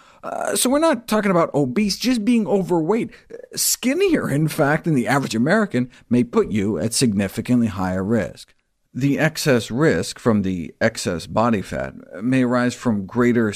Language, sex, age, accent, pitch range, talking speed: English, male, 50-69, American, 115-165 Hz, 160 wpm